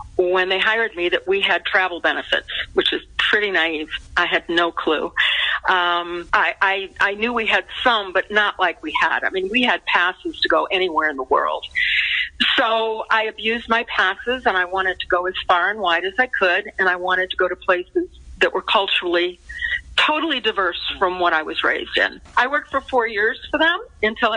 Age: 50-69